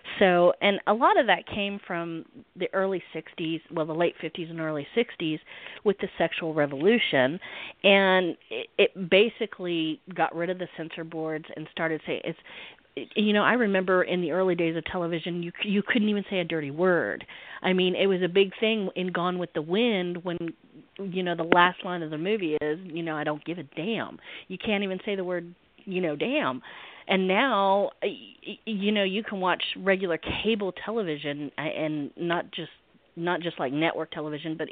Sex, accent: female, American